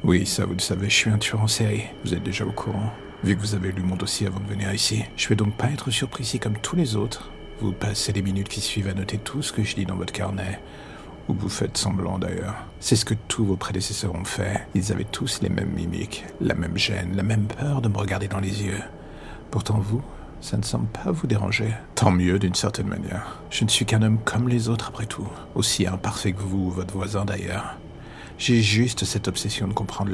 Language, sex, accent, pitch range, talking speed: French, male, French, 95-110 Hz, 245 wpm